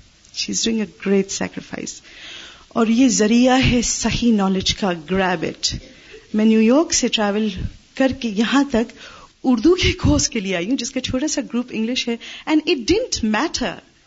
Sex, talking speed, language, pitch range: female, 50 wpm, Urdu, 205-290 Hz